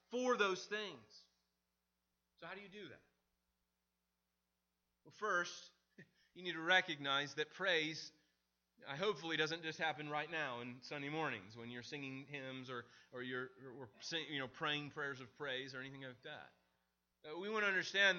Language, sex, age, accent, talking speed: English, male, 30-49, American, 160 wpm